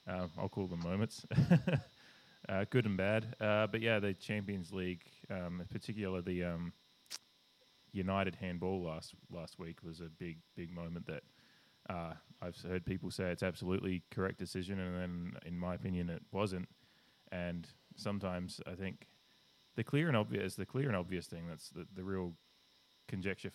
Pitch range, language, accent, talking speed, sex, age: 90-100 Hz, English, Australian, 165 wpm, male, 20-39